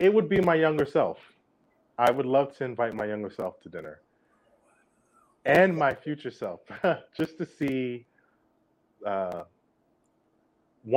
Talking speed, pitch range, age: 130 wpm, 105-145 Hz, 30-49